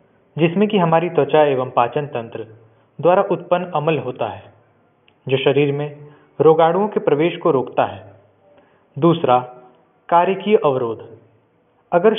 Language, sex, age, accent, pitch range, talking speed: Hindi, male, 20-39, native, 125-170 Hz, 125 wpm